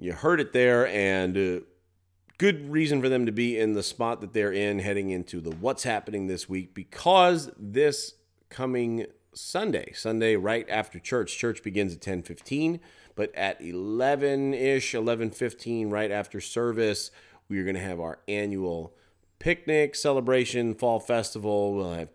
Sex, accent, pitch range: male, American, 90-120 Hz